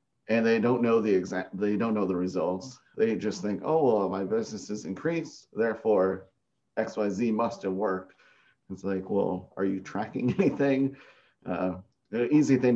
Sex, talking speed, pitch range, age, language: male, 180 wpm, 95-115 Hz, 30-49, English